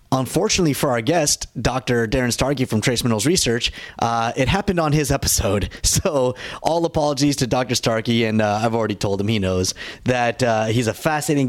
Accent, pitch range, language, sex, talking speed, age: American, 115-145 Hz, English, male, 190 wpm, 30-49